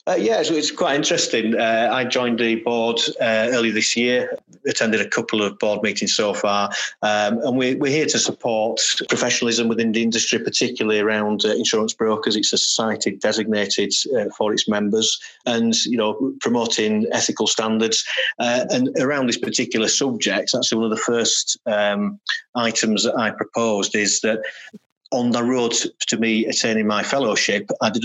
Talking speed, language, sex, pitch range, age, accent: 175 wpm, English, male, 105-120 Hz, 30-49, British